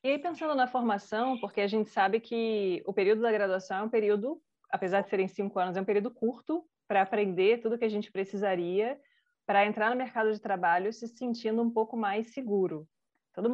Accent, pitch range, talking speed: Brazilian, 195-230 Hz, 205 wpm